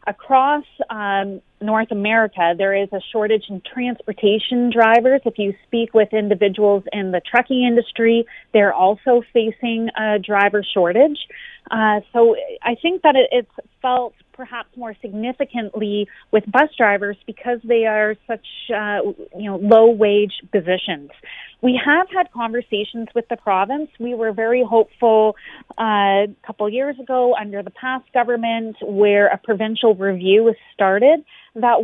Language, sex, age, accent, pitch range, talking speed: English, female, 30-49, American, 205-245 Hz, 145 wpm